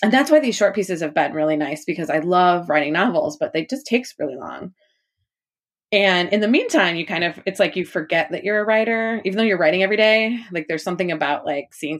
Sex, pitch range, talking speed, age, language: female, 155-210 Hz, 240 wpm, 20-39, English